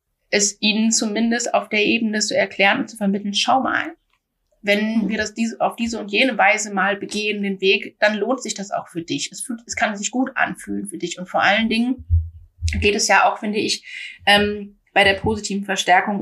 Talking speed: 195 wpm